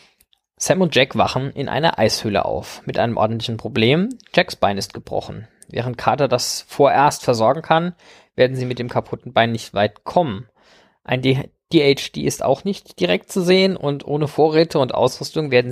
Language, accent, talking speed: German, German, 170 wpm